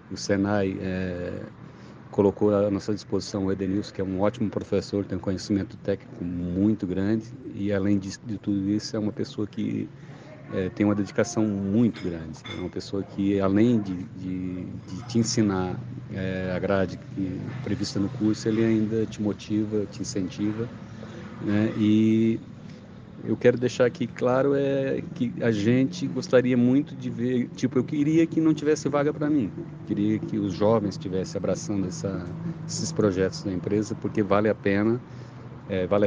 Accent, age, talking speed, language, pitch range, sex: Brazilian, 40-59, 160 wpm, Portuguese, 100-120 Hz, male